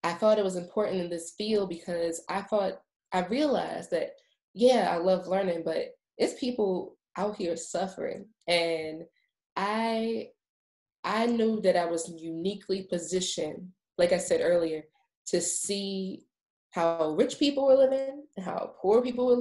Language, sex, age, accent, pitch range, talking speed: English, female, 20-39, American, 175-215 Hz, 150 wpm